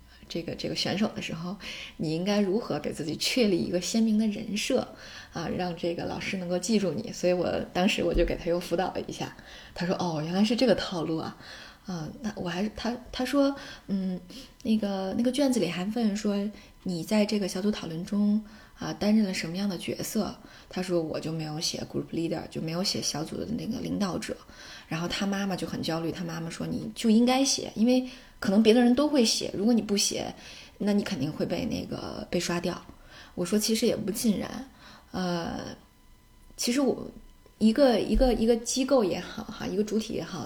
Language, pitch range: Chinese, 180-240 Hz